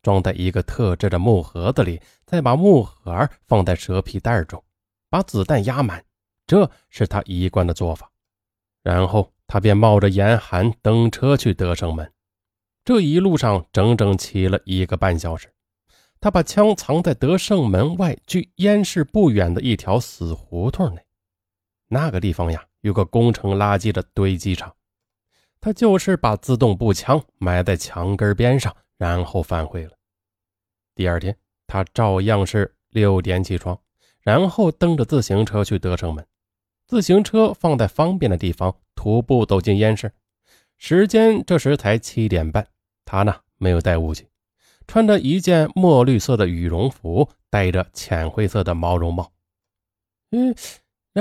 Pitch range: 90-135 Hz